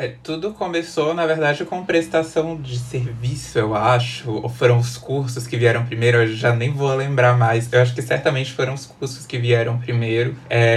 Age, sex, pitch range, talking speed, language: 20-39, male, 120-145 Hz, 195 wpm, Portuguese